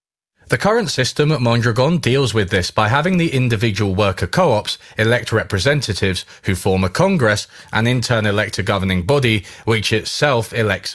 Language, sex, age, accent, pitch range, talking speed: Indonesian, male, 30-49, British, 100-135 Hz, 165 wpm